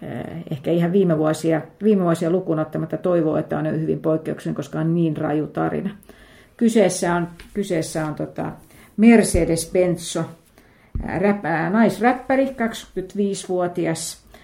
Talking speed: 120 wpm